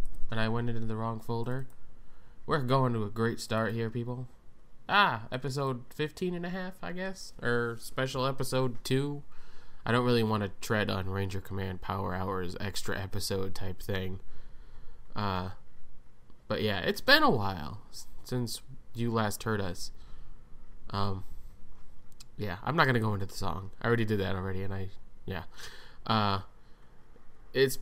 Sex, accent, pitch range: male, American, 100-125 Hz